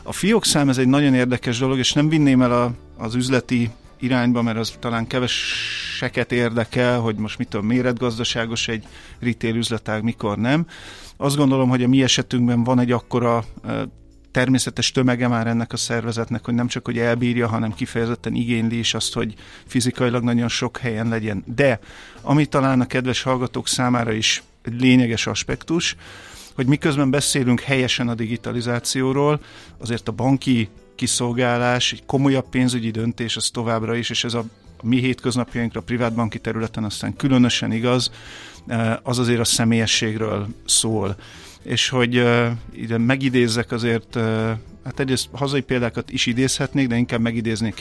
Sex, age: male, 50-69